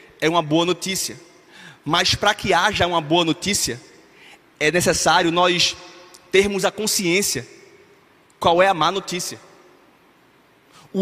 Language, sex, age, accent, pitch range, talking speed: Portuguese, male, 20-39, Brazilian, 185-215 Hz, 125 wpm